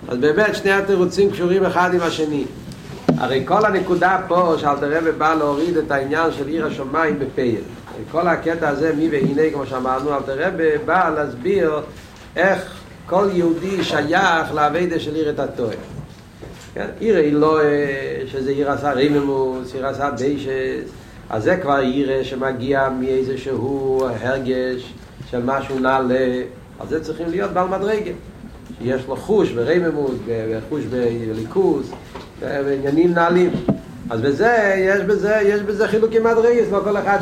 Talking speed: 140 wpm